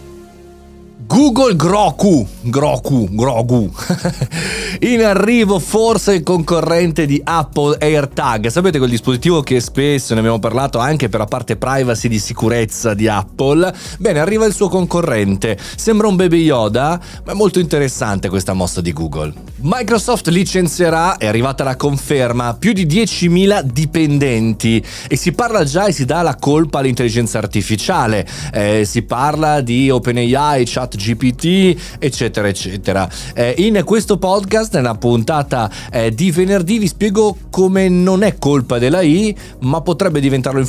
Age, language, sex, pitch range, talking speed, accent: 30-49, Italian, male, 120-180 Hz, 145 wpm, native